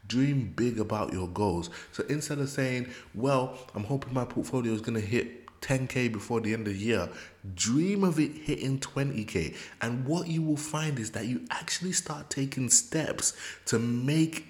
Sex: male